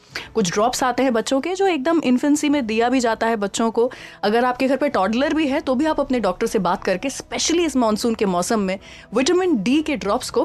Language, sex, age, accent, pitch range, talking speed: Hindi, female, 20-39, native, 210-285 Hz, 240 wpm